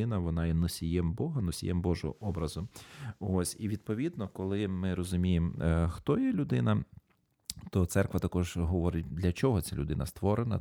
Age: 40-59